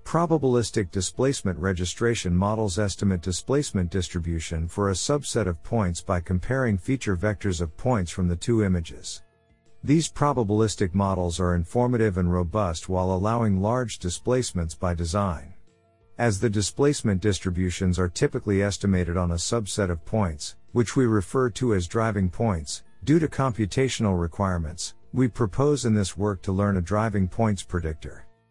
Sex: male